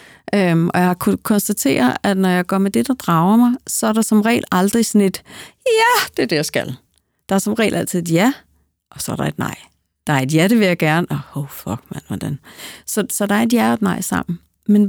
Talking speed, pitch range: 260 wpm, 170-220 Hz